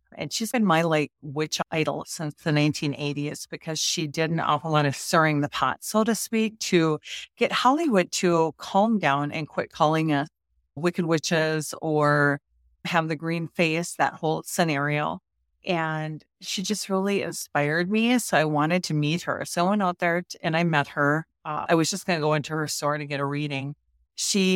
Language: English